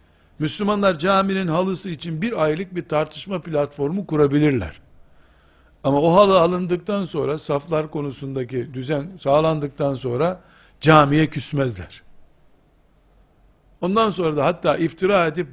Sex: male